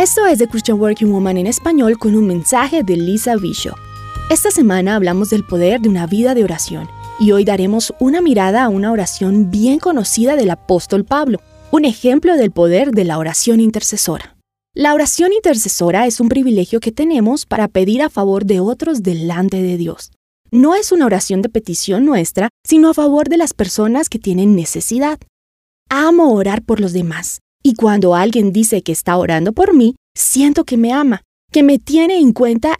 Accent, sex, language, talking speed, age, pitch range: Colombian, female, Spanish, 185 wpm, 20-39, 195-275 Hz